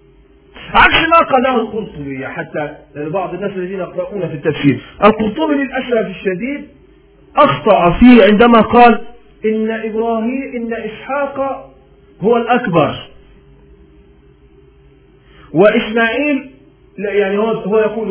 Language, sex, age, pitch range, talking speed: Arabic, male, 40-59, 180-265 Hz, 95 wpm